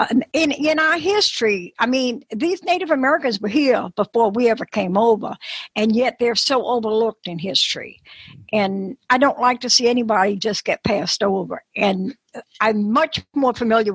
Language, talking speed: English, 170 wpm